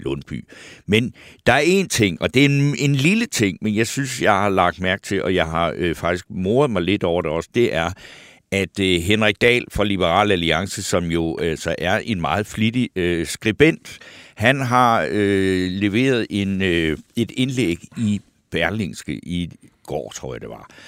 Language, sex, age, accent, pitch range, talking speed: Danish, male, 60-79, native, 95-130 Hz, 185 wpm